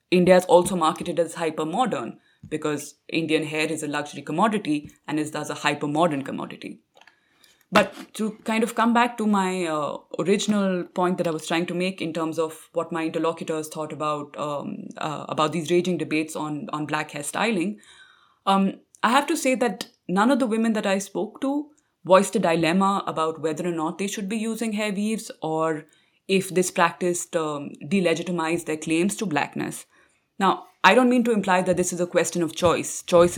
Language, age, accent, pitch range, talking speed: English, 20-39, Indian, 160-205 Hz, 190 wpm